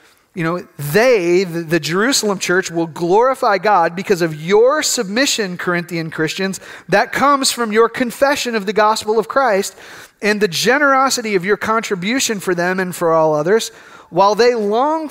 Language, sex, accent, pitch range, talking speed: English, male, American, 180-245 Hz, 160 wpm